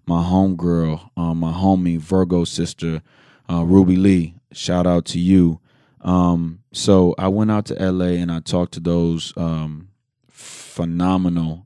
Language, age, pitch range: English, 20-39, 85-90 Hz